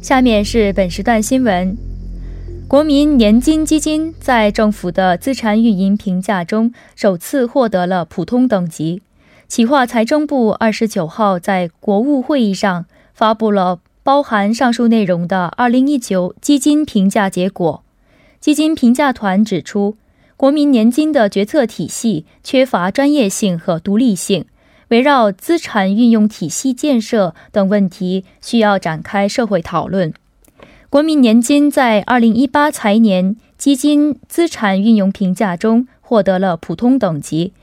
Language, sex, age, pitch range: Korean, female, 20-39, 190-260 Hz